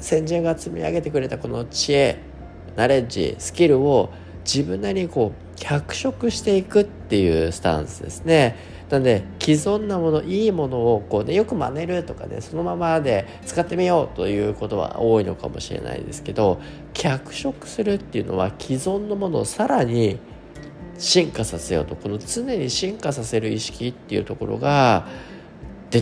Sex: male